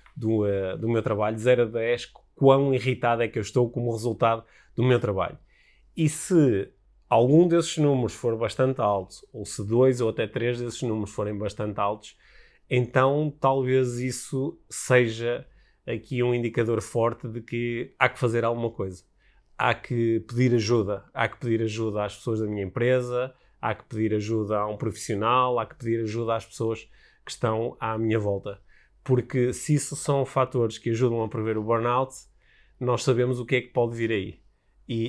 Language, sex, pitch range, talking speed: Portuguese, male, 110-130 Hz, 180 wpm